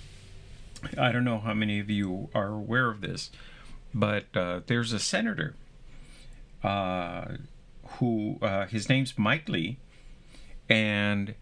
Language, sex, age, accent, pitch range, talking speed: English, male, 50-69, American, 100-130 Hz, 125 wpm